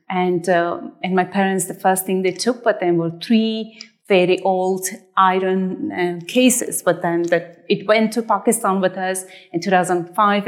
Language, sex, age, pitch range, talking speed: English, female, 30-49, 180-210 Hz, 170 wpm